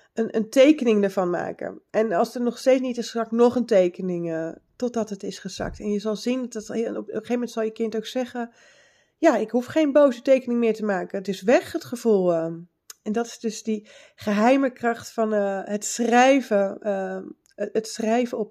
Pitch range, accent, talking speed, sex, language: 205-245 Hz, Dutch, 210 wpm, female, Dutch